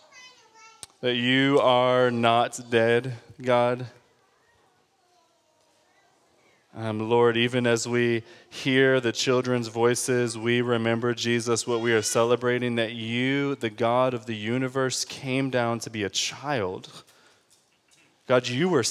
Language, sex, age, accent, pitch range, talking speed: English, male, 20-39, American, 120-140 Hz, 120 wpm